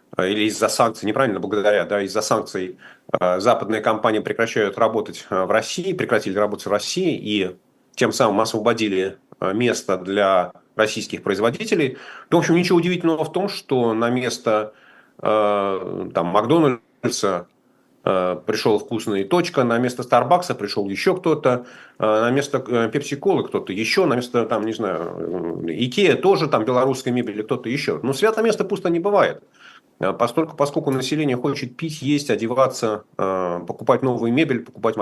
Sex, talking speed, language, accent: male, 140 wpm, Russian, native